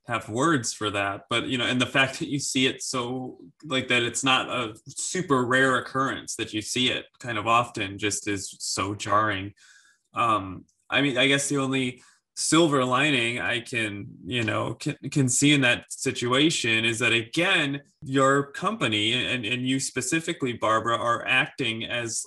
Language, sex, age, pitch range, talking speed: English, male, 20-39, 115-135 Hz, 180 wpm